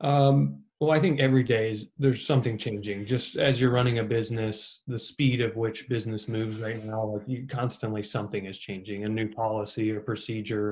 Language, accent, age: English, American, 20-39